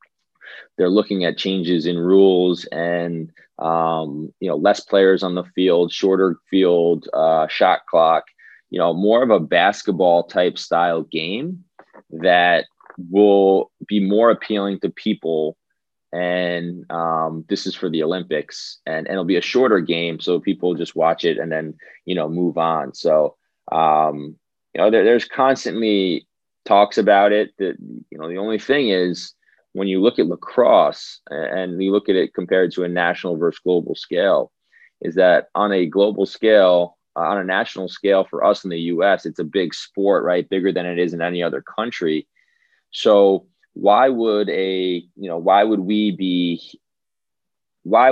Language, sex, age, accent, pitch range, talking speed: English, male, 20-39, American, 85-100 Hz, 170 wpm